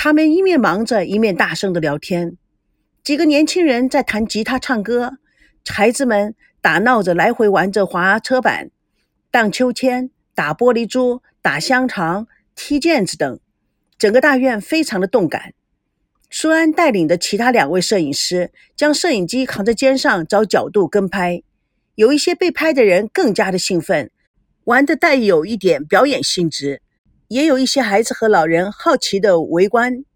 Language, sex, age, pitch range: Chinese, female, 50-69, 195-275 Hz